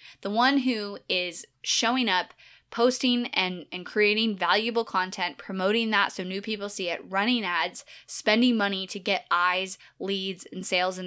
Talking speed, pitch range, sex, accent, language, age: 165 wpm, 180-215 Hz, female, American, English, 10-29